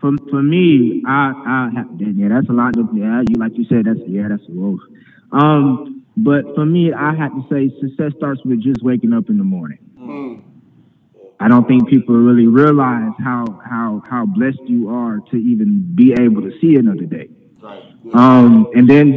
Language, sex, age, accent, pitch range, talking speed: English, male, 20-39, American, 125-200 Hz, 190 wpm